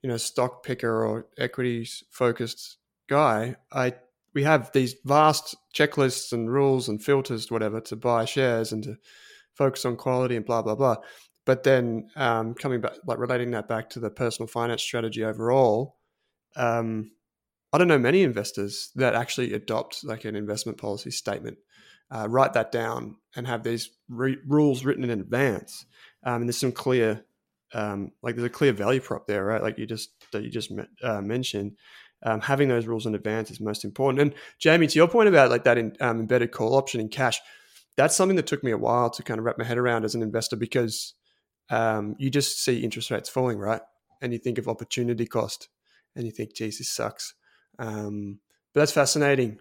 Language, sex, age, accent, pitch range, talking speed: English, male, 20-39, Australian, 115-140 Hz, 195 wpm